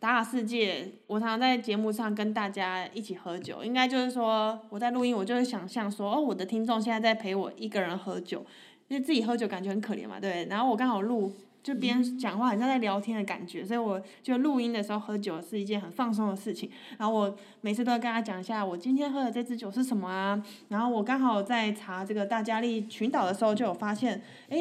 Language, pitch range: Chinese, 195-240 Hz